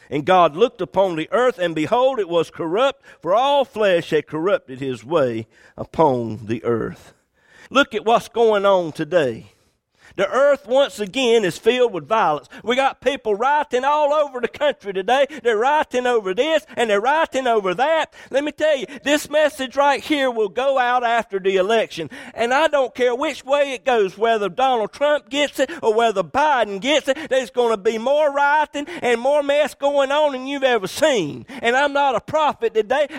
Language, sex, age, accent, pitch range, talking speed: English, male, 50-69, American, 195-290 Hz, 190 wpm